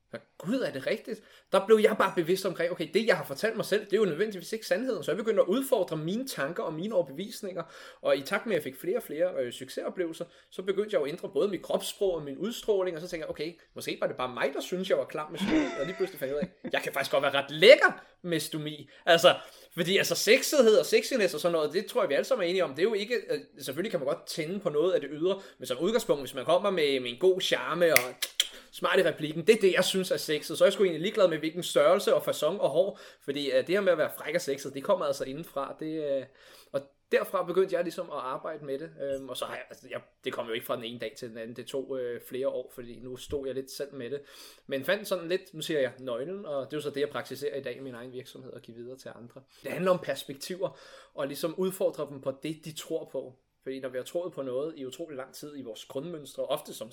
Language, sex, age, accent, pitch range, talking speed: Danish, male, 20-39, native, 135-190 Hz, 280 wpm